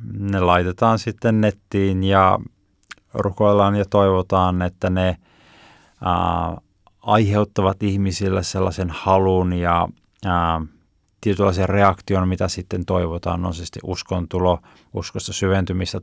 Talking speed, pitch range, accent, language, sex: 95 wpm, 85-100 Hz, native, Finnish, male